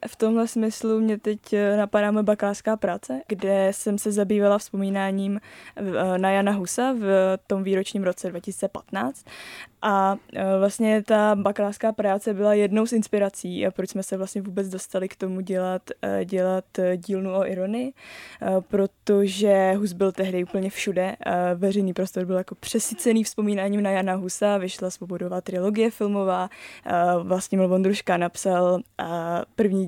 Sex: female